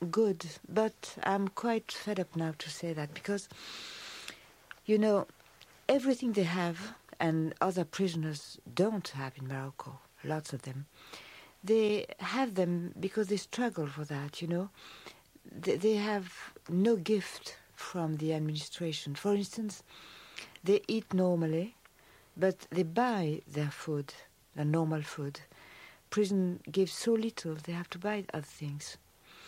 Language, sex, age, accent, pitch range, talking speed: English, female, 60-79, French, 160-200 Hz, 135 wpm